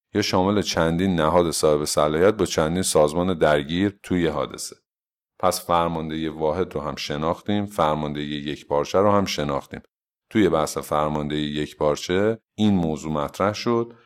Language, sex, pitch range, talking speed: Persian, male, 80-105 Hz, 130 wpm